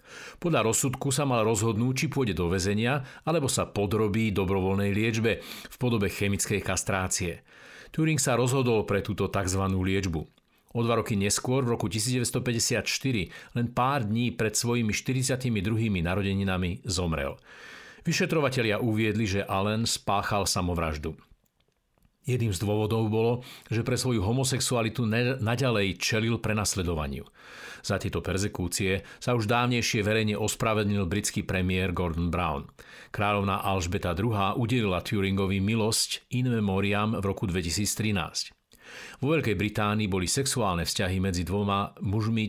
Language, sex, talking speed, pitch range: Slovak, male, 125 wpm, 95-120 Hz